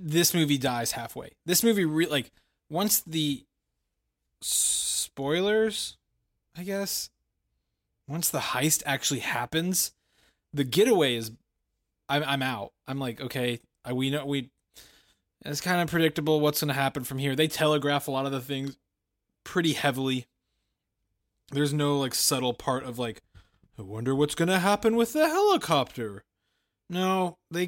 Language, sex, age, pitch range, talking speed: English, male, 20-39, 120-170 Hz, 145 wpm